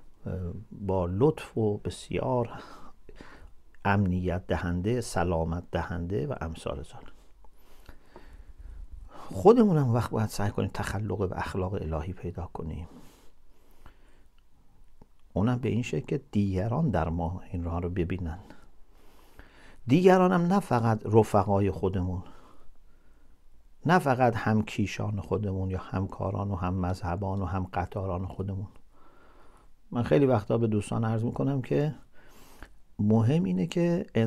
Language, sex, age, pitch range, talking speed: English, male, 50-69, 95-130 Hz, 110 wpm